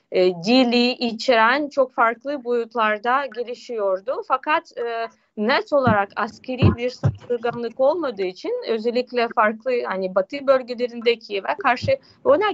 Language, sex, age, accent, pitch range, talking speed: Turkish, female, 30-49, native, 215-265 Hz, 115 wpm